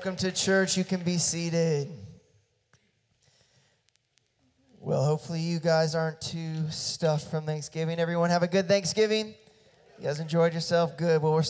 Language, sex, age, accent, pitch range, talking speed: English, male, 20-39, American, 155-180 Hz, 145 wpm